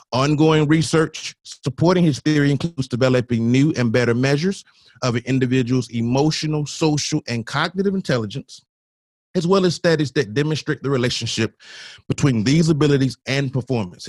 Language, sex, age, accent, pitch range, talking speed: English, male, 30-49, American, 120-155 Hz, 135 wpm